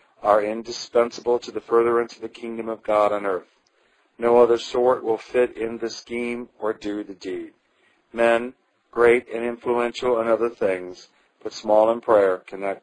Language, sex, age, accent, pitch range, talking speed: English, male, 40-59, American, 105-120 Hz, 170 wpm